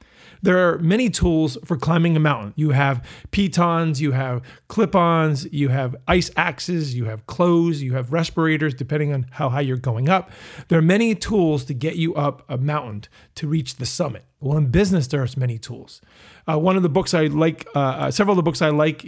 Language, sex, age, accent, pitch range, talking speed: English, male, 40-59, American, 140-175 Hz, 210 wpm